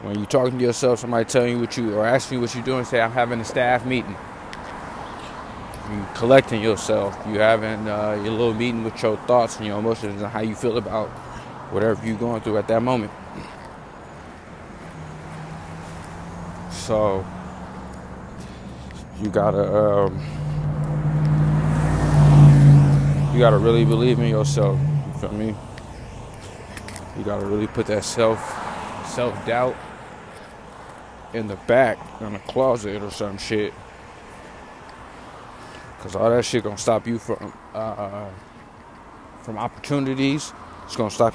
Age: 20-39